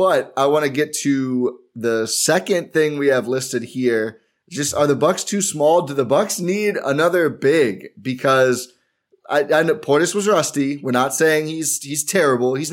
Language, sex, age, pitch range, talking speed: English, male, 20-39, 115-150 Hz, 185 wpm